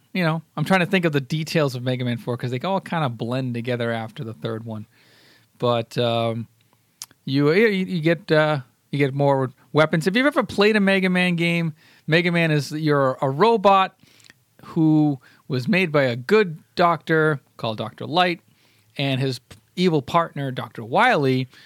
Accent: American